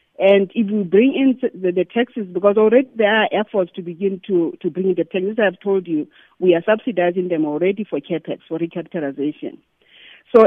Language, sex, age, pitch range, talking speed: English, female, 40-59, 175-220 Hz, 195 wpm